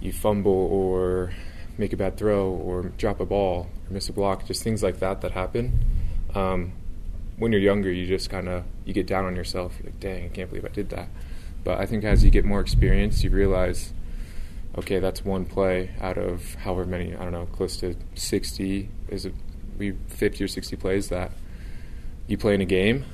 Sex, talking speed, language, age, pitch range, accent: male, 205 wpm, English, 20-39, 90-100 Hz, American